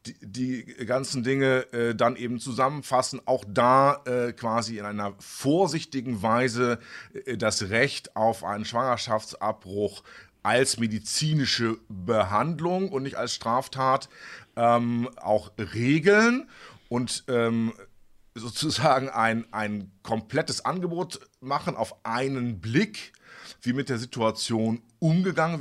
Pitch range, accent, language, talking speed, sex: 110-140 Hz, German, German, 110 wpm, male